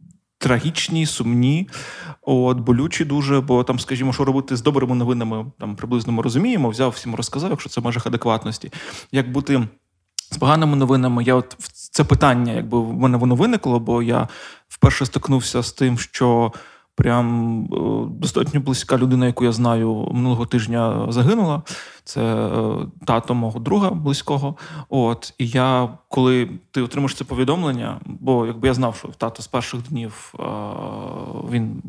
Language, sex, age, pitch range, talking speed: Ukrainian, male, 20-39, 120-140 Hz, 150 wpm